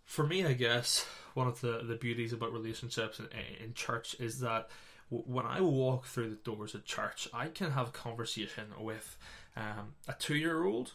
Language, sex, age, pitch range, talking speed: English, male, 20-39, 115-135 Hz, 180 wpm